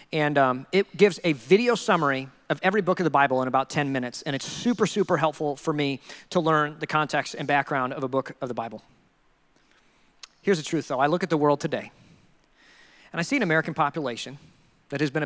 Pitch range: 145-200 Hz